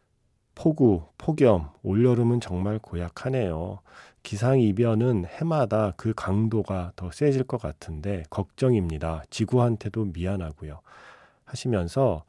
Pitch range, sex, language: 90-125 Hz, male, Korean